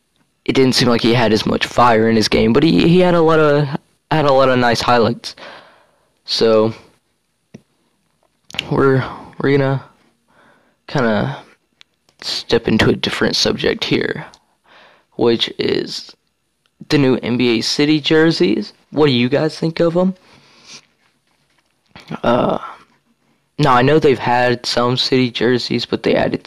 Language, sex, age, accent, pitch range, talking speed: English, male, 20-39, American, 115-145 Hz, 145 wpm